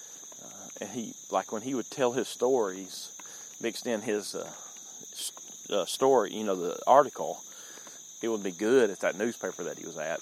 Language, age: English, 30-49